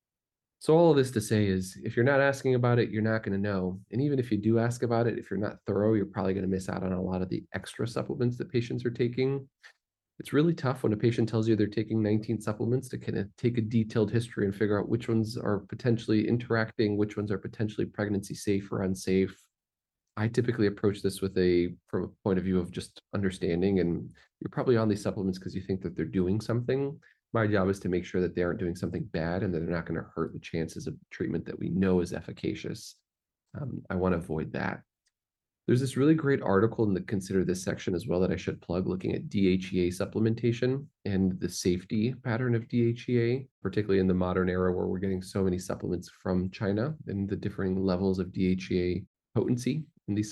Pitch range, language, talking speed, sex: 95-115 Hz, English, 230 wpm, male